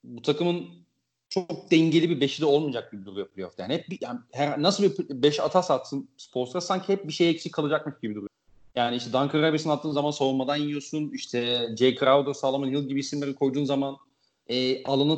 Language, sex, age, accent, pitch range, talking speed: Turkish, male, 40-59, native, 125-150 Hz, 190 wpm